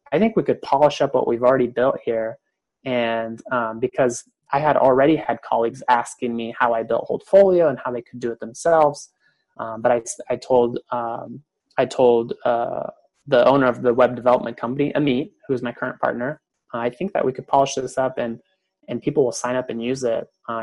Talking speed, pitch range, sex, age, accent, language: 210 wpm, 120-140 Hz, male, 20-39, American, English